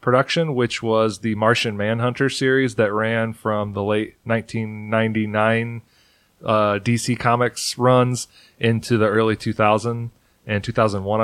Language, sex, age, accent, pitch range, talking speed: English, male, 30-49, American, 110-120 Hz, 115 wpm